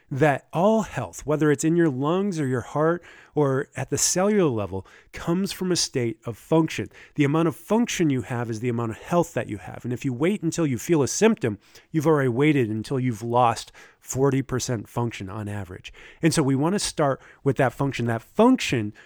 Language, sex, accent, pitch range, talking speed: English, male, American, 130-175 Hz, 210 wpm